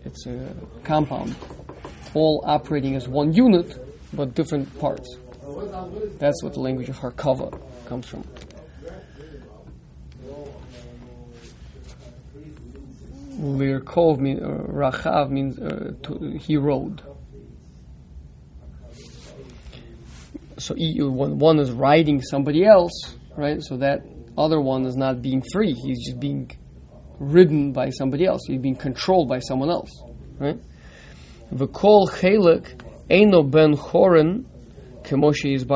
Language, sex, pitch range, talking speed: English, male, 130-160 Hz, 110 wpm